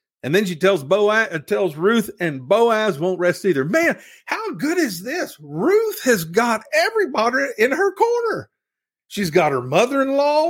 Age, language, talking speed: 50-69, English, 165 wpm